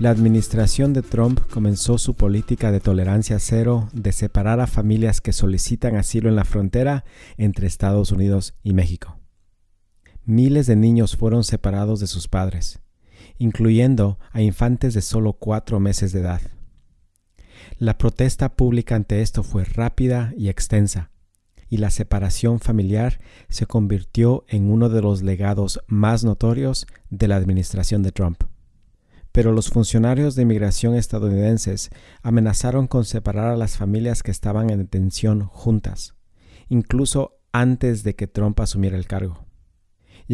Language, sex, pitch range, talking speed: English, male, 95-115 Hz, 140 wpm